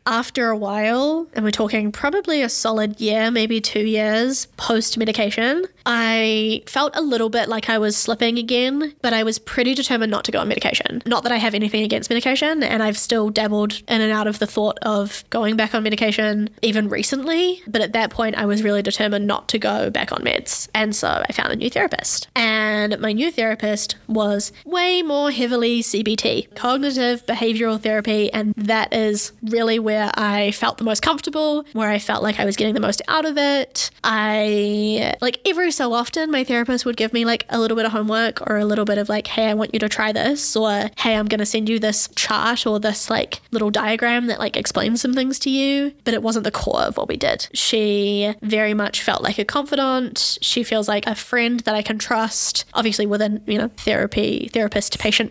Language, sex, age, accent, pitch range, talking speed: English, female, 10-29, Australian, 215-245 Hz, 215 wpm